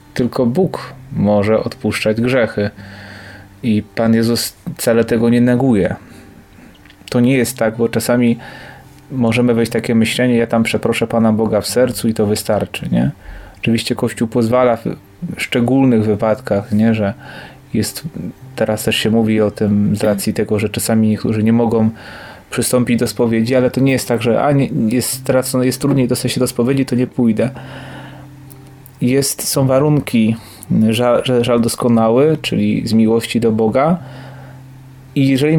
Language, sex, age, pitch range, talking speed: Polish, male, 30-49, 110-130 Hz, 155 wpm